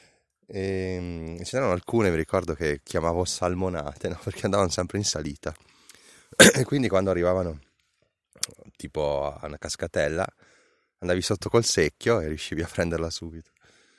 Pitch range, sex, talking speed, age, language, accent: 80-100 Hz, male, 135 wpm, 30-49, Italian, native